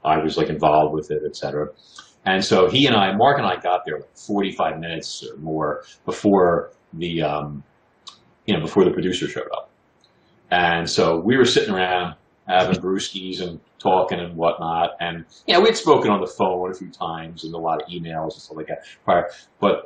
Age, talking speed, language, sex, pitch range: 30-49, 200 wpm, English, male, 90-145 Hz